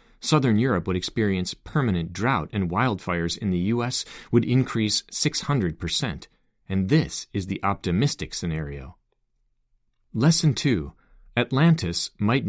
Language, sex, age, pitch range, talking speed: English, male, 40-59, 90-125 Hz, 115 wpm